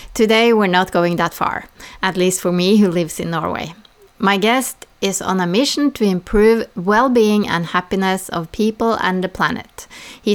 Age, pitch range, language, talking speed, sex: 30-49, 180-230 Hz, English, 180 wpm, female